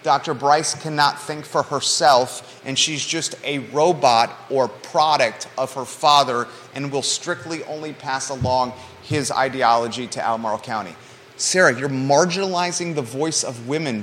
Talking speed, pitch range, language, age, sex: 145 wpm, 130-165 Hz, English, 30-49, male